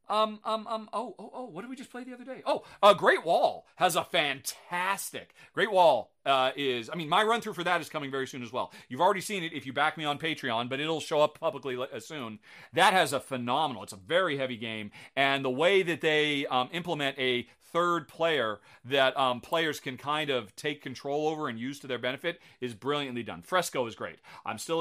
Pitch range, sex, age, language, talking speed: 135-180 Hz, male, 40-59, English, 225 wpm